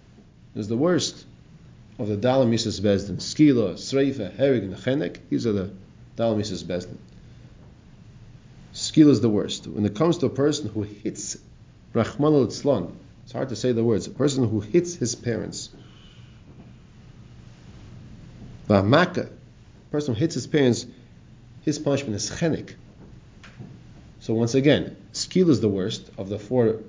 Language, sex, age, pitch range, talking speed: English, male, 40-59, 105-135 Hz, 145 wpm